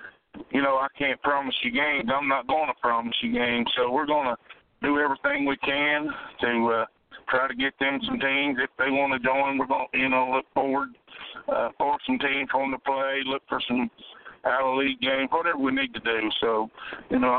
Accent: American